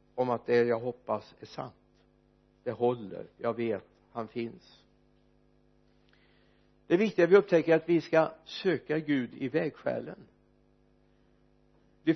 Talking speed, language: 130 wpm, Swedish